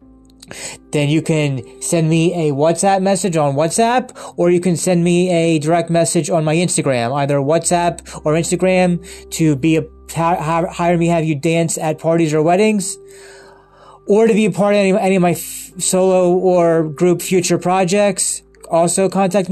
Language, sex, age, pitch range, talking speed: English, male, 20-39, 140-180 Hz, 165 wpm